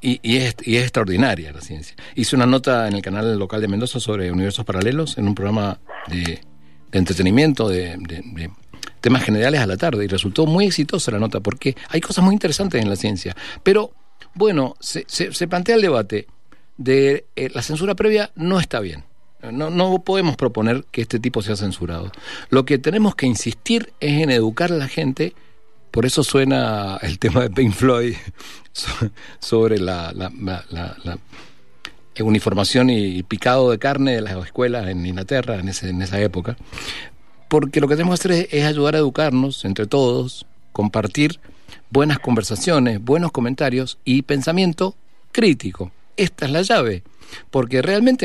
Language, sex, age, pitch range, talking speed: Spanish, male, 50-69, 100-145 Hz, 175 wpm